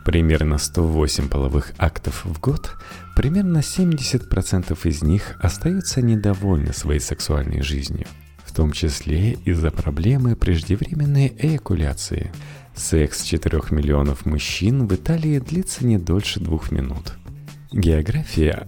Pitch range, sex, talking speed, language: 80-125 Hz, male, 110 wpm, Russian